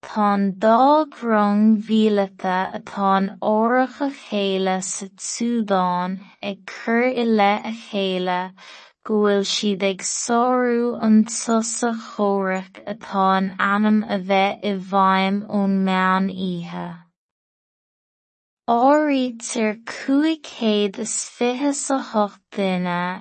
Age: 20-39